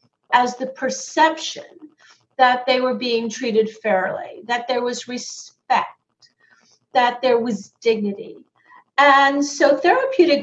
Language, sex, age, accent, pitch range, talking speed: English, female, 40-59, American, 220-285 Hz, 115 wpm